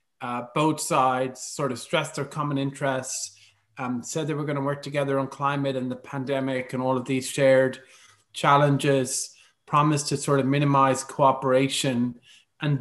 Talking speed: 165 wpm